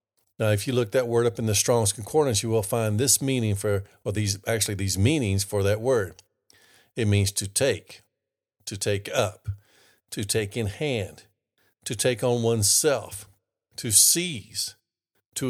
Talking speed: 170 wpm